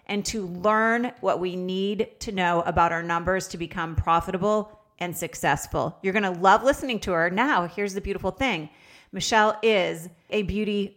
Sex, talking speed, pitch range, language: female, 175 wpm, 175-210 Hz, English